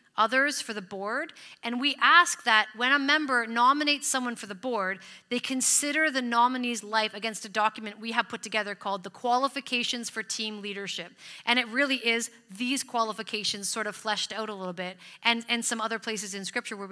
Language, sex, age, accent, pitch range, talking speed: English, female, 30-49, American, 195-240 Hz, 195 wpm